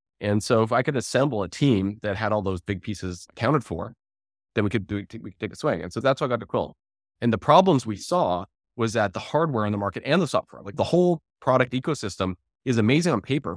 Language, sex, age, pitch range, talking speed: English, male, 20-39, 95-130 Hz, 250 wpm